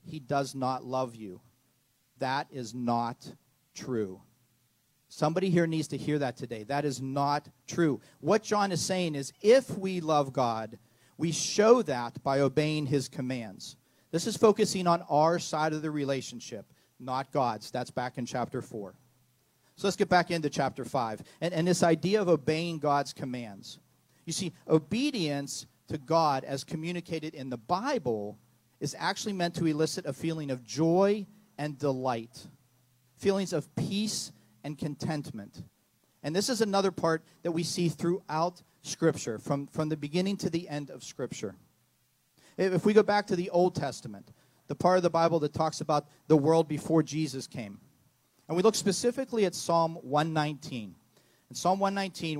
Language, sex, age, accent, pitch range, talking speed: English, male, 40-59, American, 130-170 Hz, 165 wpm